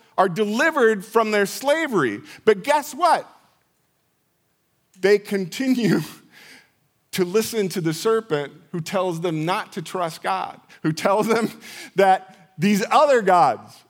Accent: American